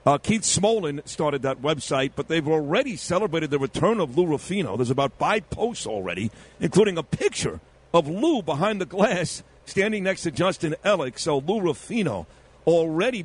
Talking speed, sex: 170 wpm, male